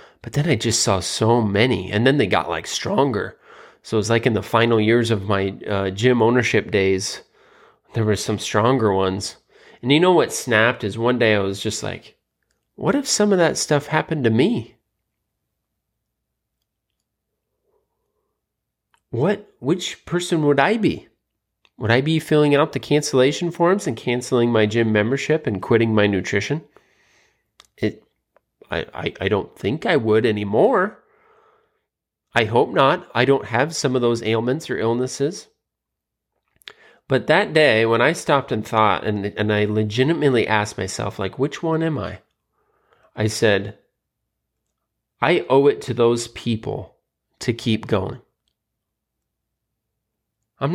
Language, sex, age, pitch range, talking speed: English, male, 30-49, 110-140 Hz, 150 wpm